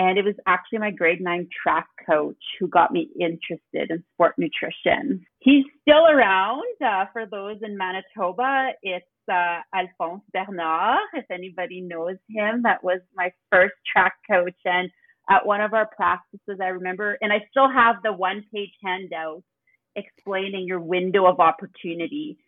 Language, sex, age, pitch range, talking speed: English, female, 30-49, 180-215 Hz, 160 wpm